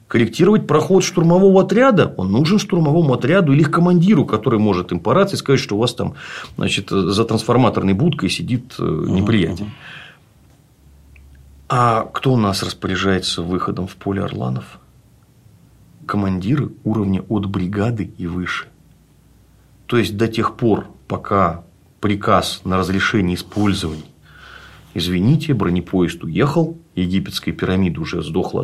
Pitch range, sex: 90-125 Hz, male